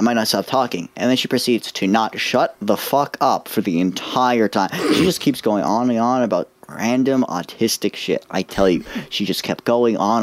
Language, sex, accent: English, male, American